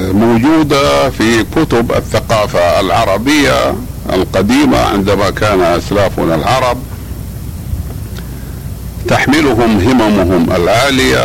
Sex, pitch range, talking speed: male, 90-115 Hz, 70 wpm